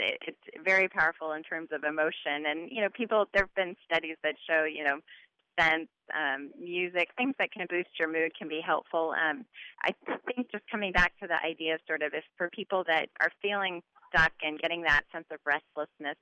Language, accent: English, American